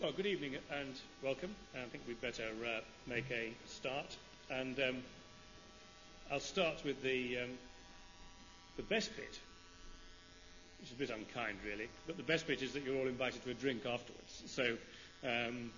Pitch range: 100-130 Hz